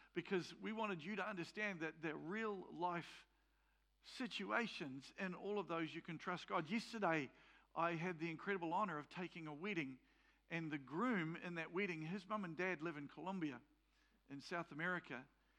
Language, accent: English, Australian